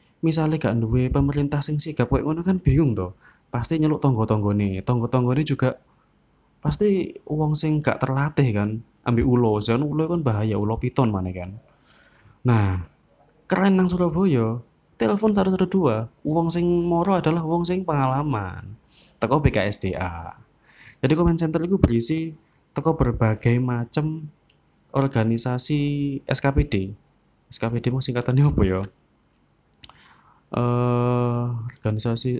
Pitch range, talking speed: 105-145 Hz, 120 wpm